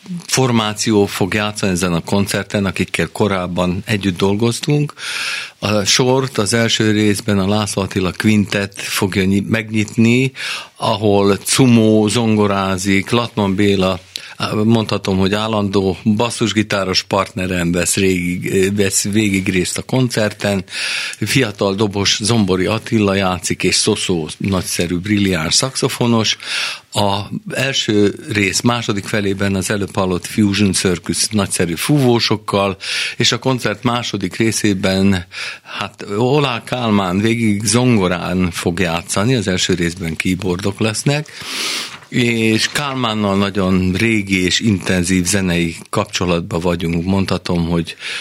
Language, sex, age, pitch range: Hungarian, male, 50-69, 95-110 Hz